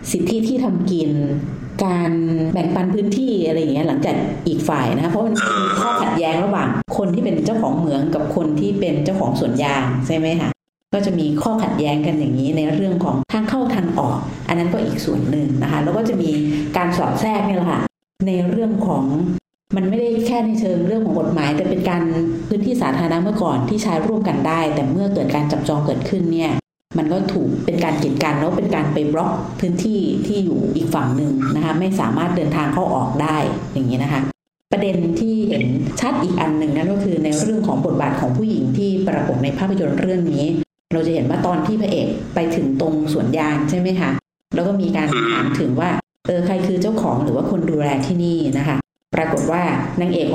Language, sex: Thai, female